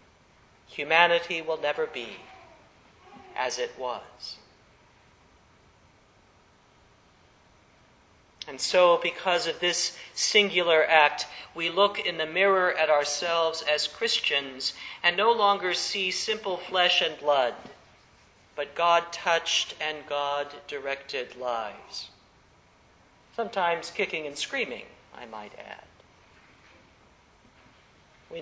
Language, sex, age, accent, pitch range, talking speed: English, male, 50-69, American, 155-195 Hz, 95 wpm